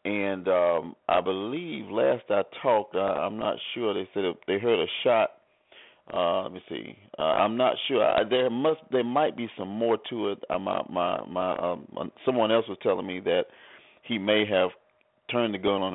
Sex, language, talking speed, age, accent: male, English, 195 wpm, 40-59, American